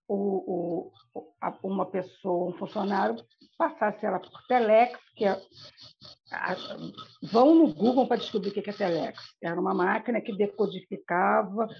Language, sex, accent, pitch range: Portuguese, female, Brazilian, 205-265 Hz